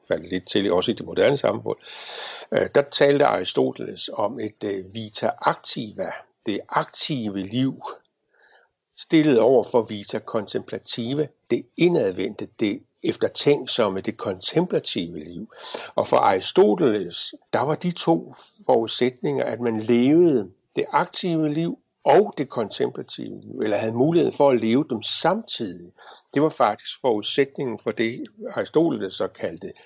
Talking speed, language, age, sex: 125 wpm, Danish, 60-79, male